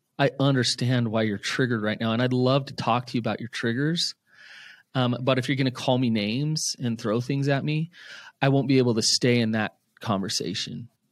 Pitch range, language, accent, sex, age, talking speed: 120-160 Hz, English, American, male, 30-49, 215 wpm